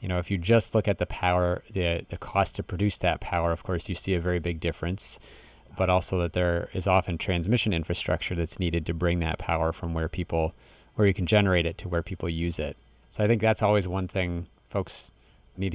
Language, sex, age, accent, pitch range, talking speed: English, male, 30-49, American, 90-105 Hz, 230 wpm